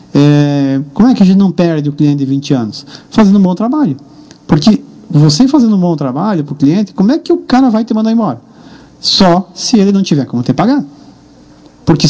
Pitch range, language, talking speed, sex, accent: 140-170 Hz, Portuguese, 220 wpm, male, Brazilian